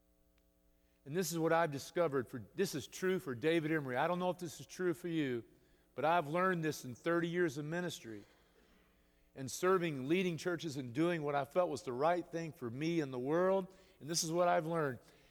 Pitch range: 130-175 Hz